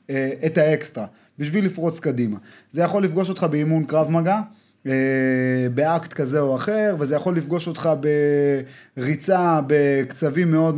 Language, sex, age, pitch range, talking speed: Hebrew, male, 20-39, 135-180 Hz, 130 wpm